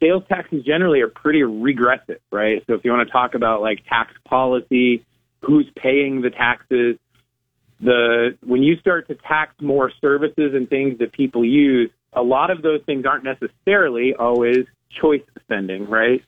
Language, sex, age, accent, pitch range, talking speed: English, male, 30-49, American, 120-140 Hz, 165 wpm